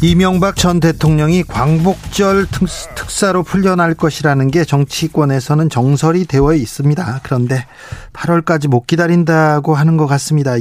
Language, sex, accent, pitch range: Korean, male, native, 130-175 Hz